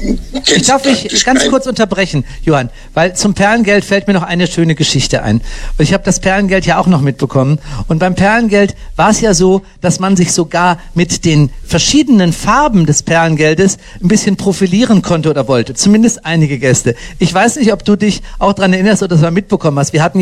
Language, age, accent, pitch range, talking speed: German, 50-69, German, 150-205 Hz, 200 wpm